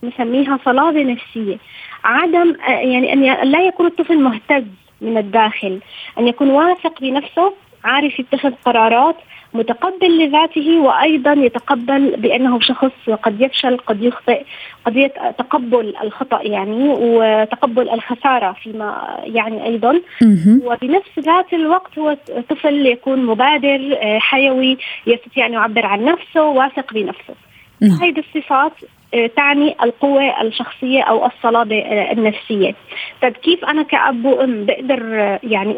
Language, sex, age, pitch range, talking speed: Arabic, female, 20-39, 235-310 Hz, 115 wpm